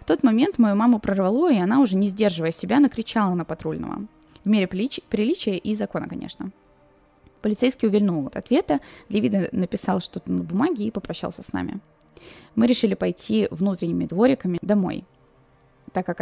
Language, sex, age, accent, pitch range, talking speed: Russian, female, 20-39, native, 185-225 Hz, 155 wpm